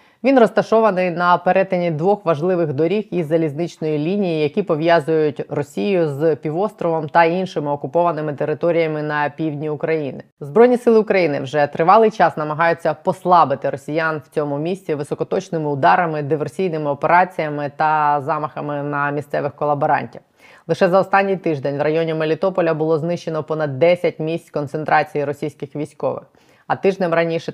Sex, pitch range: female, 150-175 Hz